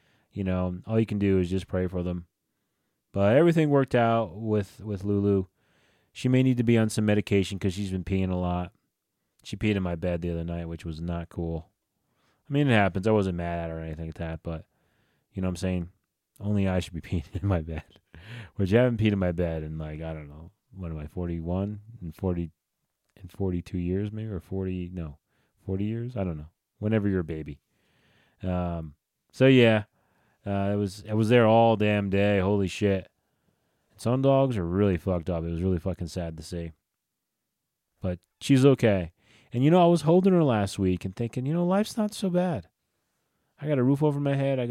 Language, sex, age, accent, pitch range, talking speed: English, male, 30-49, American, 90-115 Hz, 215 wpm